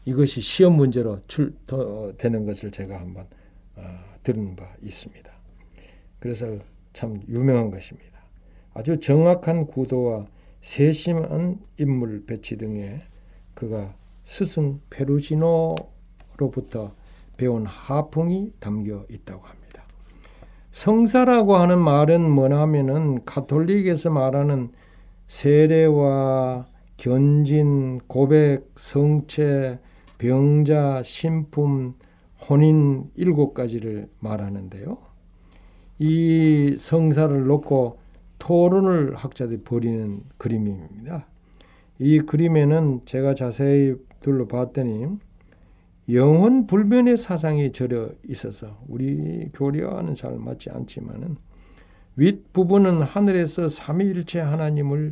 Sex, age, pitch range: male, 60-79, 100-150 Hz